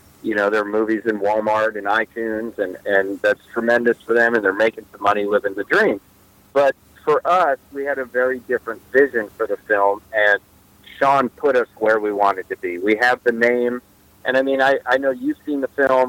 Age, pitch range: 50-69, 105-130 Hz